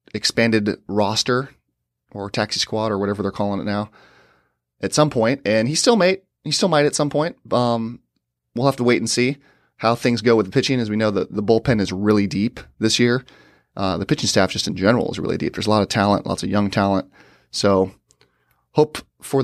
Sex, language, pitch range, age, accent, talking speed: male, English, 100-135 Hz, 30-49, American, 215 wpm